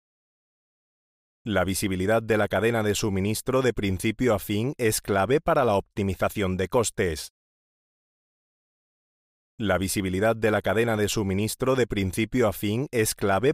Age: 30-49